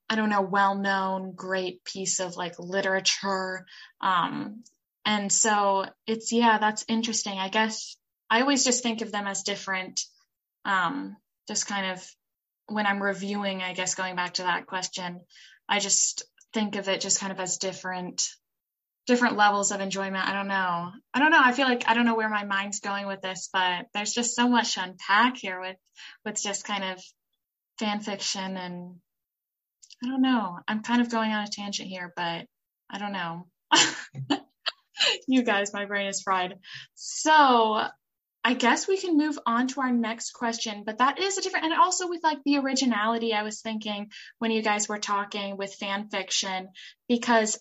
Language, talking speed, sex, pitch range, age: English, 180 wpm, female, 190-230 Hz, 10-29